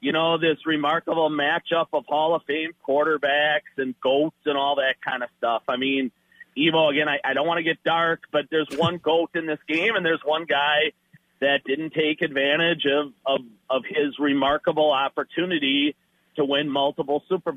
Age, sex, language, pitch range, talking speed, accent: 40-59, male, English, 140-170 Hz, 180 wpm, American